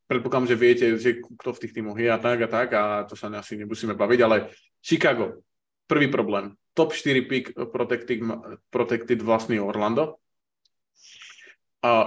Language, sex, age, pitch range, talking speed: Slovak, male, 20-39, 110-130 Hz, 155 wpm